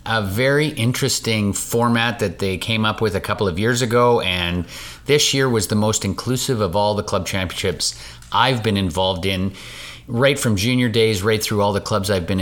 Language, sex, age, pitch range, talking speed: English, male, 30-49, 90-110 Hz, 200 wpm